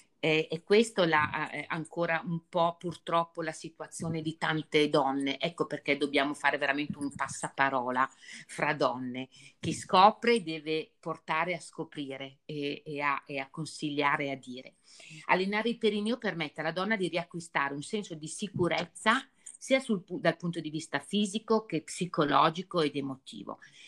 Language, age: Italian, 50-69